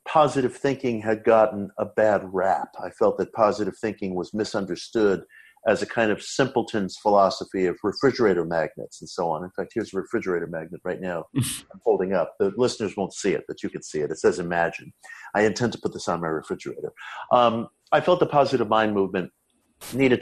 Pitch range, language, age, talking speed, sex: 100-140 Hz, English, 50-69, 195 wpm, male